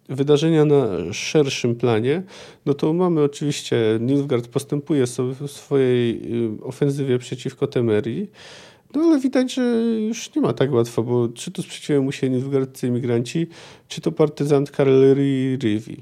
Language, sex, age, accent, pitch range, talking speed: Polish, male, 40-59, native, 120-150 Hz, 140 wpm